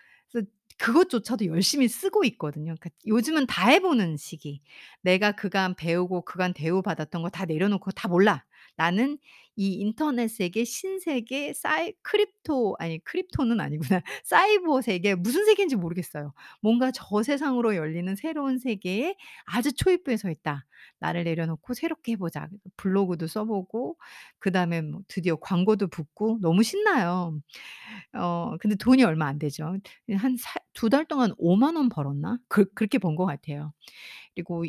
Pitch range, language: 170-255 Hz, Korean